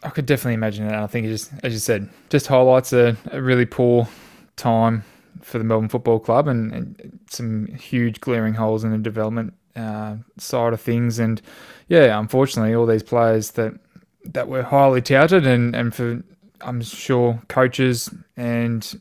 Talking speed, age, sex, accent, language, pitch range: 175 wpm, 20-39, male, Australian, English, 115-135 Hz